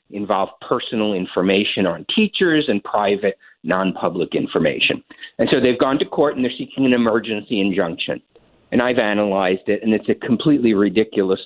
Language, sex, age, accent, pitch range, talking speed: English, male, 50-69, American, 110-170 Hz, 155 wpm